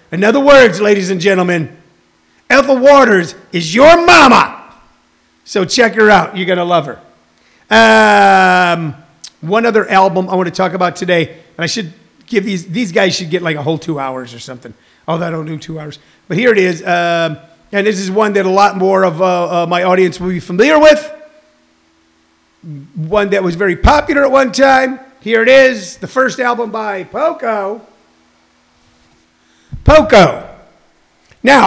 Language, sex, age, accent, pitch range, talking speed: English, male, 30-49, American, 175-235 Hz, 175 wpm